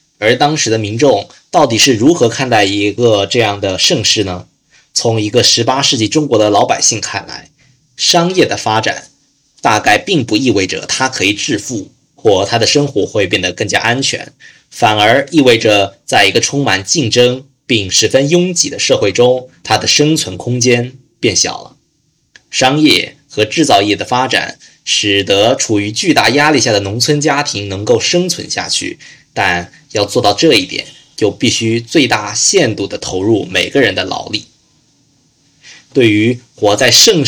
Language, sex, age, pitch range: Chinese, male, 20-39, 105-145 Hz